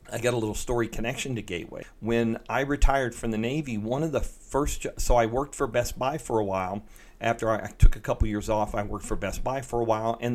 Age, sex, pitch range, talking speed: 40-59, male, 105-120 Hz, 250 wpm